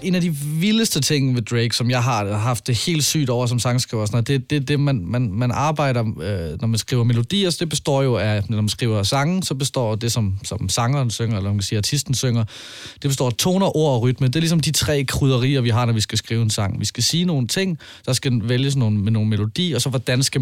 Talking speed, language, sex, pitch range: 265 wpm, Danish, male, 110-140 Hz